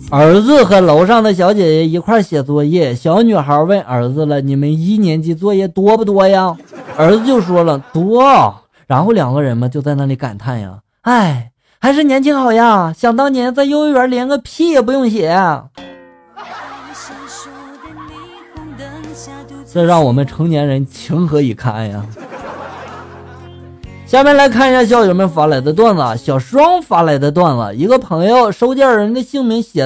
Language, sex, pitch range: Chinese, male, 140-230 Hz